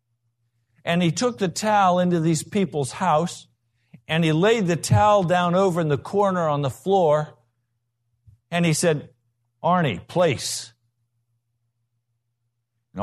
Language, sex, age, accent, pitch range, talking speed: English, male, 60-79, American, 115-175 Hz, 130 wpm